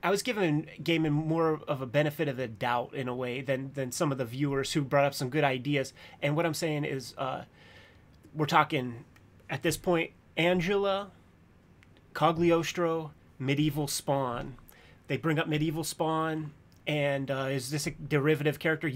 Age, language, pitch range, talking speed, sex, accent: 30-49, English, 135-170 Hz, 170 wpm, male, American